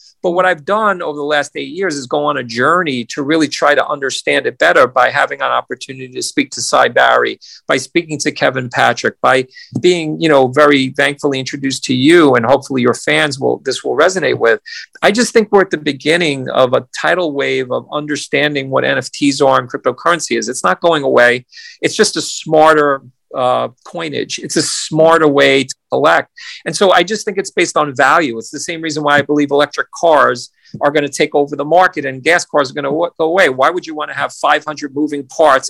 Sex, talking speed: male, 215 wpm